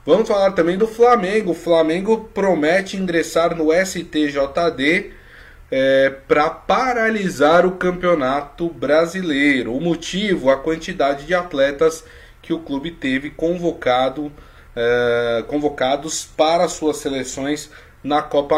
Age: 20-39